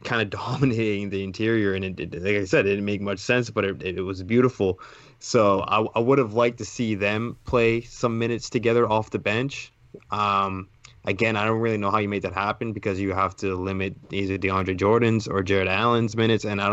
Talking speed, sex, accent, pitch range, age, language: 215 wpm, male, American, 100-115 Hz, 20-39, English